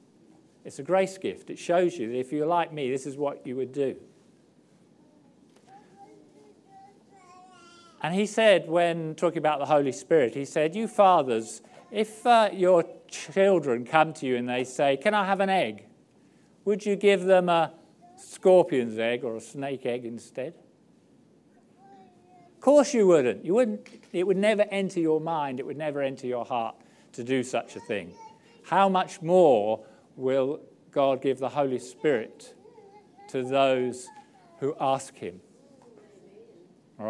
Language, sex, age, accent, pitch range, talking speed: English, male, 50-69, British, 135-205 Hz, 155 wpm